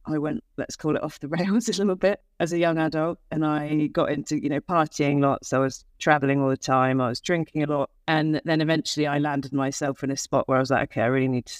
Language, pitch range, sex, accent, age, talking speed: English, 130-150 Hz, female, British, 40-59, 270 wpm